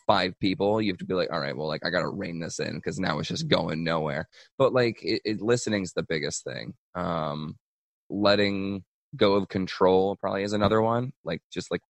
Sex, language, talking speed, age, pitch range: male, English, 215 wpm, 20-39, 85-110 Hz